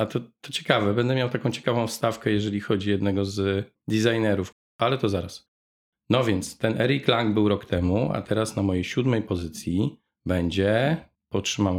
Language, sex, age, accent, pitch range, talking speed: Polish, male, 40-59, native, 100-120 Hz, 170 wpm